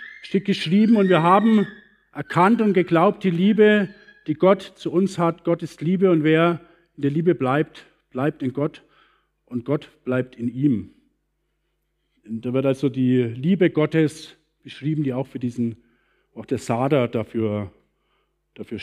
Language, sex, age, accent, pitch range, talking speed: German, male, 50-69, German, 150-190 Hz, 155 wpm